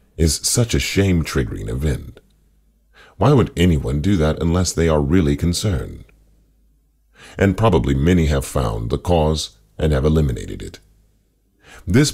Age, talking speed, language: 40-59, 135 wpm, English